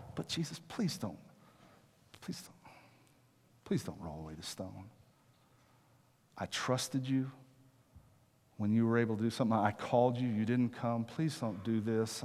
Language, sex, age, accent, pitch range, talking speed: English, male, 50-69, American, 105-130 Hz, 155 wpm